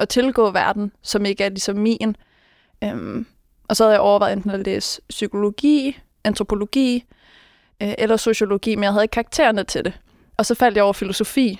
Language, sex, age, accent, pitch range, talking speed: Danish, female, 20-39, native, 200-225 Hz, 180 wpm